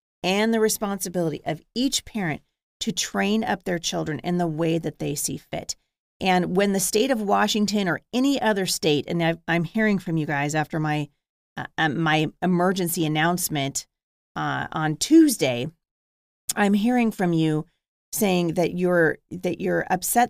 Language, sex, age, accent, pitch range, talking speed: English, female, 40-59, American, 165-200 Hz, 160 wpm